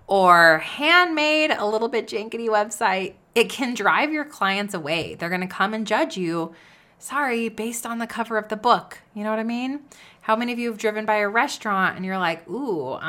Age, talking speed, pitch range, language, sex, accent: 30-49, 210 wpm, 170-230 Hz, English, female, American